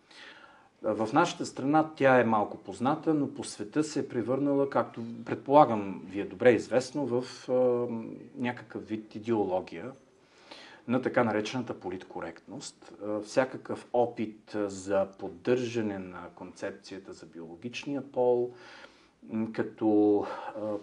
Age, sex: 40-59, male